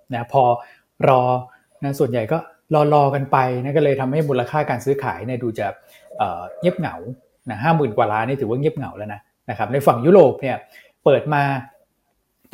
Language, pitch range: Thai, 120-150 Hz